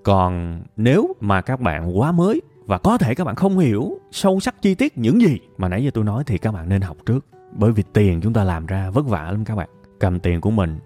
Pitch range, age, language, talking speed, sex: 95-115 Hz, 20-39, Vietnamese, 260 wpm, male